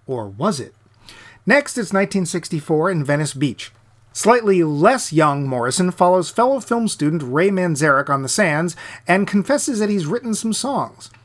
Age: 40-59